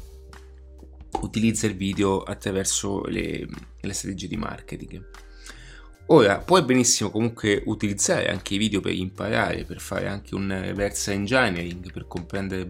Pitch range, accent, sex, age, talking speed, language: 90-105 Hz, native, male, 30-49, 130 wpm, Italian